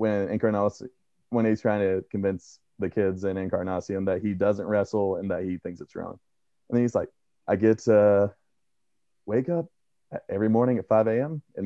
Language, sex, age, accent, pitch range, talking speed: English, male, 30-49, American, 95-105 Hz, 185 wpm